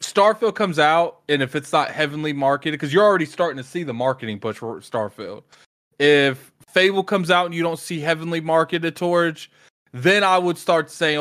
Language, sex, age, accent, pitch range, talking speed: English, male, 20-39, American, 135-170 Hz, 195 wpm